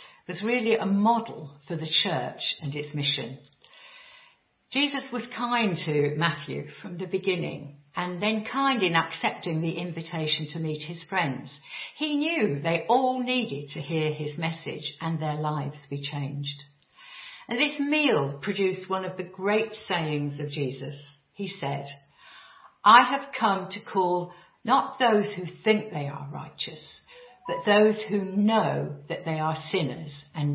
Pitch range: 145-210 Hz